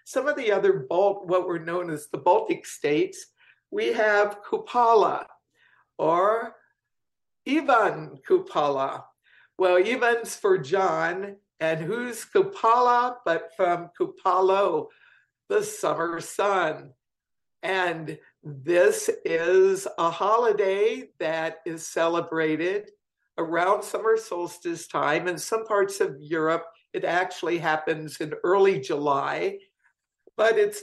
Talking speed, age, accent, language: 105 wpm, 60-79, American, English